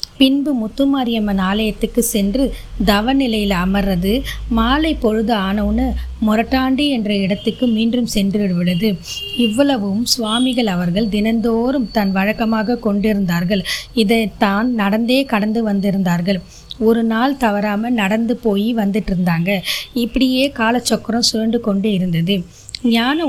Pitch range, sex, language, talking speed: 205-250 Hz, female, Tamil, 95 wpm